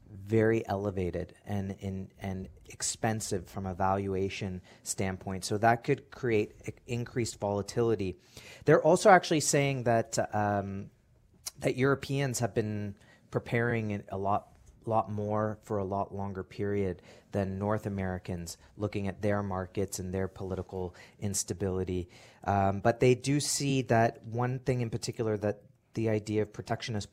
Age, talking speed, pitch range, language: 30-49, 140 wpm, 95-115 Hz, English